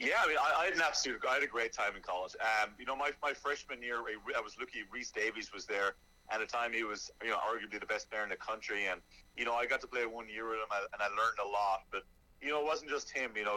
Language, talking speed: English, 300 wpm